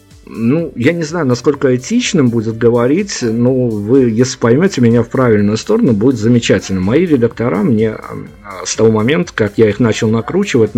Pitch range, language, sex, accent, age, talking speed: 105-125 Hz, Russian, male, native, 50-69, 160 wpm